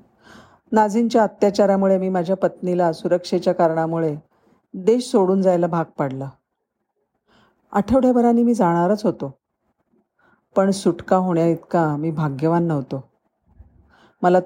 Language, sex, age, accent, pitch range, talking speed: Marathi, female, 40-59, native, 160-200 Hz, 105 wpm